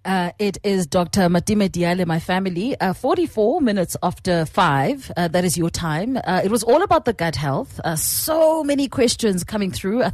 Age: 30-49